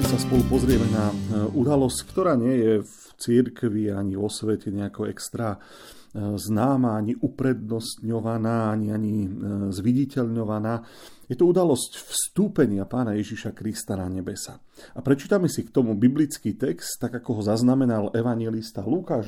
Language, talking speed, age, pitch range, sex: Slovak, 135 wpm, 40-59, 110-150 Hz, male